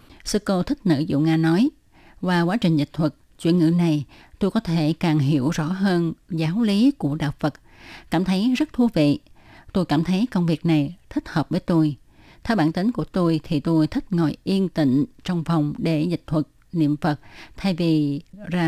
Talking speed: 200 wpm